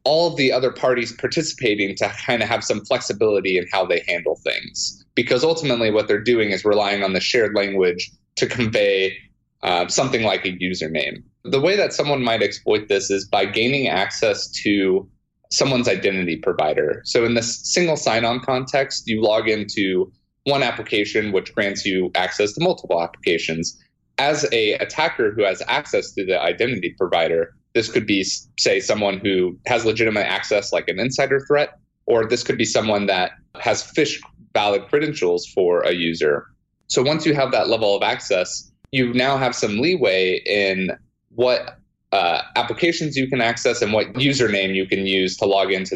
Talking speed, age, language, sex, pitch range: 170 wpm, 30-49, English, male, 100-160 Hz